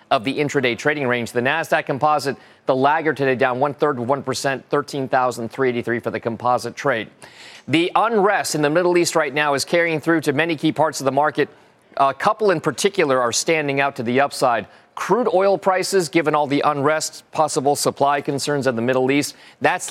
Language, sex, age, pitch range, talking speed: English, male, 40-59, 130-160 Hz, 195 wpm